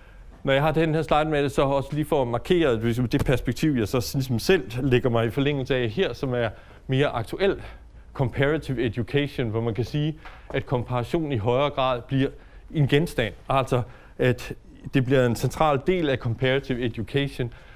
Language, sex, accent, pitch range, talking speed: English, male, Danish, 110-135 Hz, 185 wpm